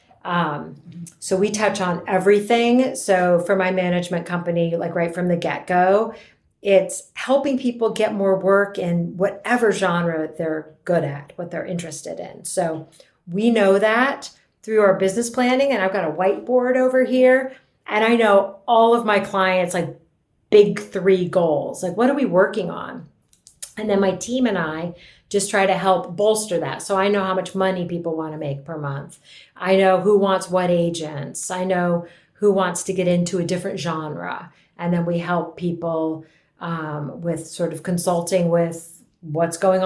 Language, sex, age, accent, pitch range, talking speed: English, female, 40-59, American, 170-200 Hz, 180 wpm